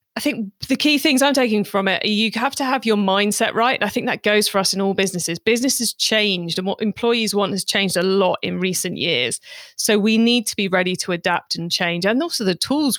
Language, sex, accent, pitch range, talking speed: English, female, British, 195-245 Hz, 245 wpm